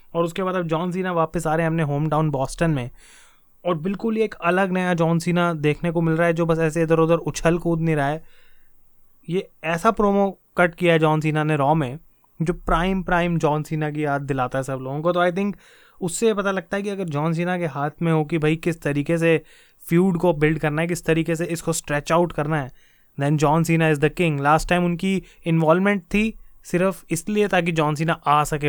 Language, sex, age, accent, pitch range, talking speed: Hindi, male, 20-39, native, 155-180 Hz, 235 wpm